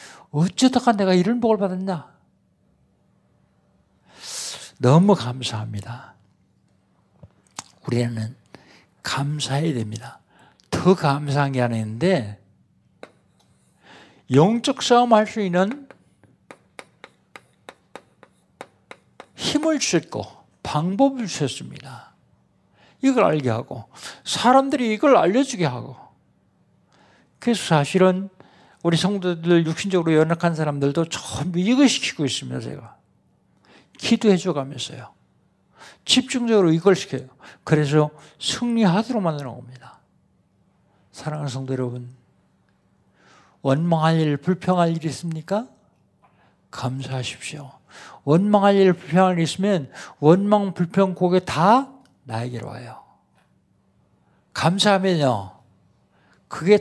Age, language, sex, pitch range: 60-79, Korean, male, 130-200 Hz